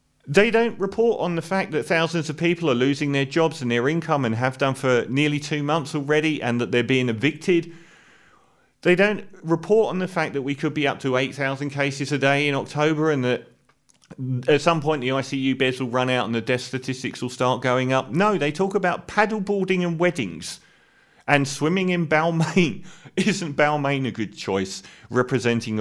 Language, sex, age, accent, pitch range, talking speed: English, male, 40-59, British, 130-175 Hz, 200 wpm